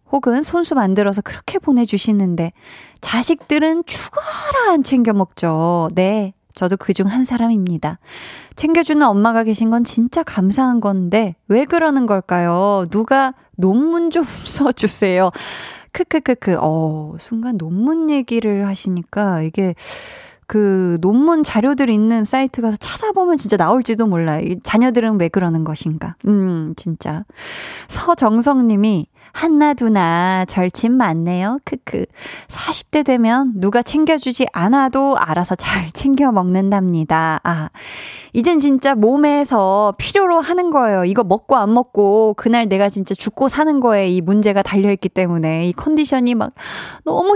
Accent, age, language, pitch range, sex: native, 20-39, Korean, 185-265 Hz, female